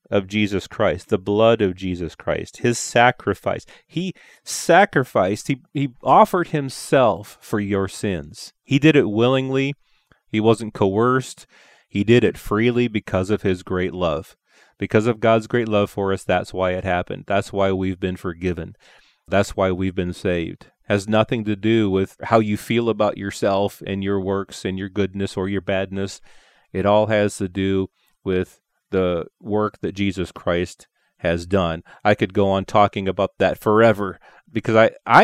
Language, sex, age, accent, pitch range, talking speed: English, male, 30-49, American, 95-110 Hz, 170 wpm